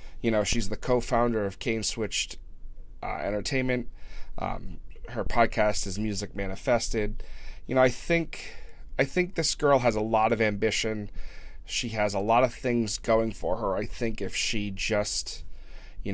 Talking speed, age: 165 wpm, 30-49